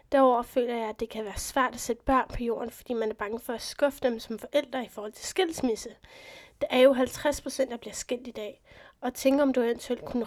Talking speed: 245 wpm